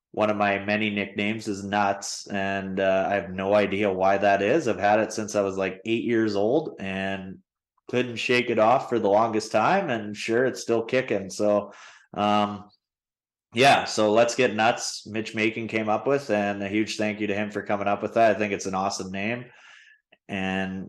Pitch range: 100-110 Hz